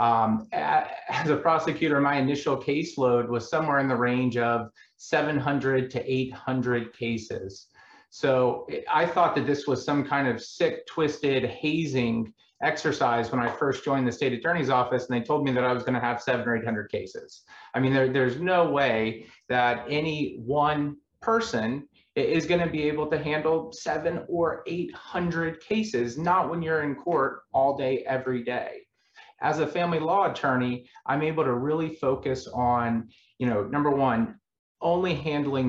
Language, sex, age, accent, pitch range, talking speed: English, male, 30-49, American, 115-150 Hz, 165 wpm